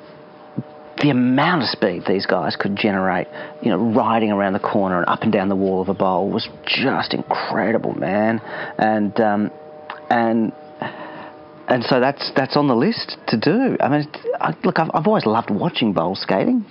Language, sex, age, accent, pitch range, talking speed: English, male, 30-49, Australian, 100-130 Hz, 180 wpm